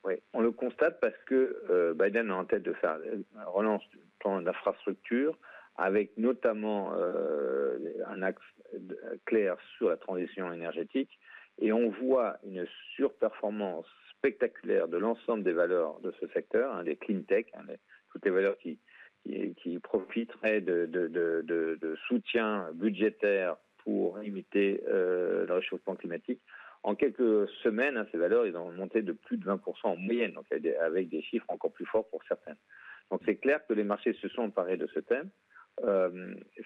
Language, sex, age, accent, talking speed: French, male, 50-69, French, 160 wpm